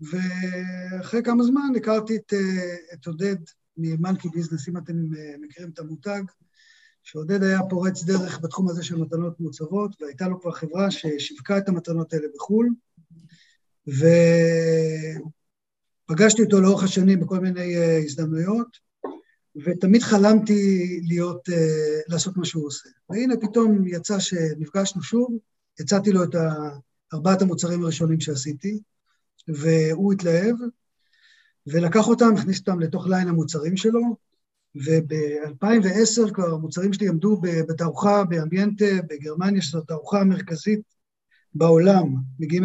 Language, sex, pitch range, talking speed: Hebrew, male, 160-200 Hz, 115 wpm